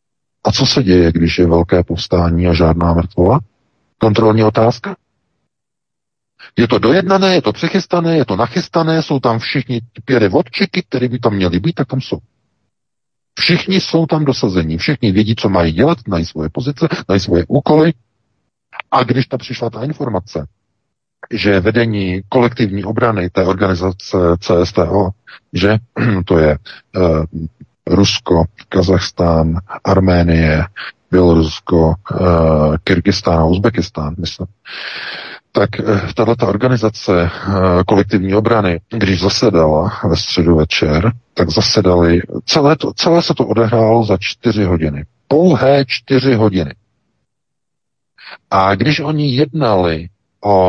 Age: 50-69